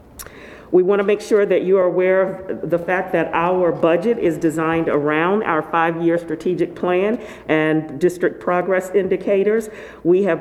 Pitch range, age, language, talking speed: 170-205 Hz, 50-69, English, 160 wpm